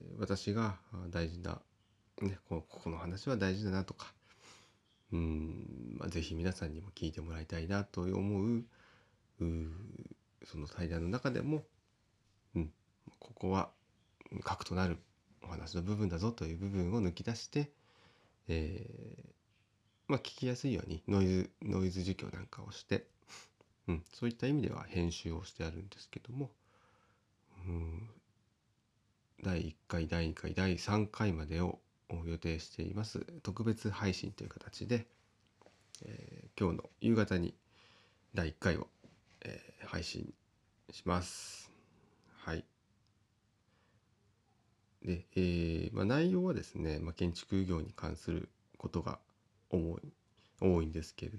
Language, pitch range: Japanese, 85-110 Hz